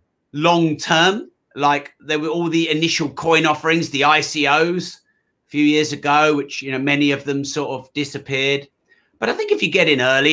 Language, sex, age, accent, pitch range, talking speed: English, male, 30-49, British, 135-155 Hz, 190 wpm